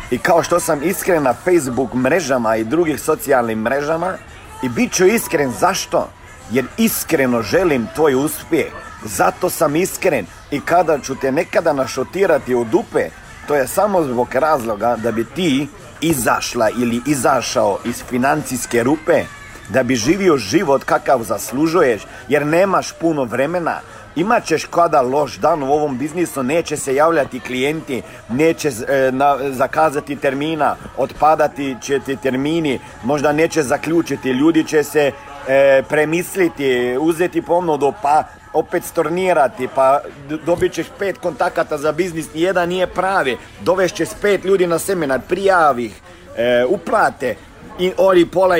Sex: male